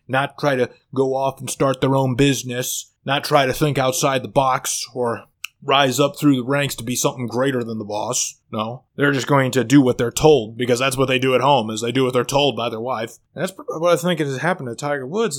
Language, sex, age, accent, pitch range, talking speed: English, male, 30-49, American, 125-165 Hz, 250 wpm